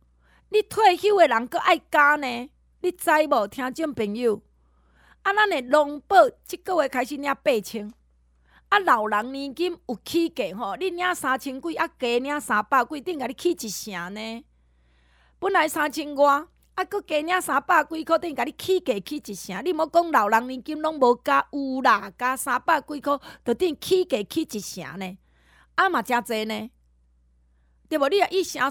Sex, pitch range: female, 200-310 Hz